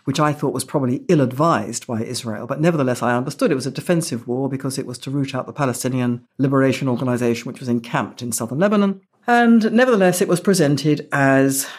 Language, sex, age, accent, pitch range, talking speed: English, female, 60-79, British, 125-175 Hz, 200 wpm